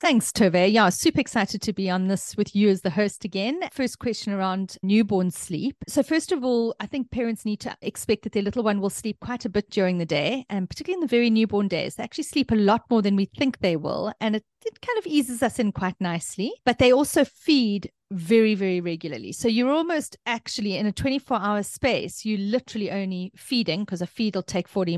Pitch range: 190-245 Hz